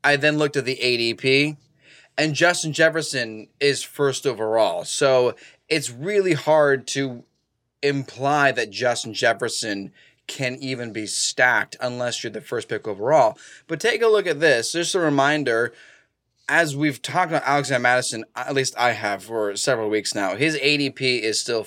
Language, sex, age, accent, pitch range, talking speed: English, male, 20-39, American, 120-150 Hz, 160 wpm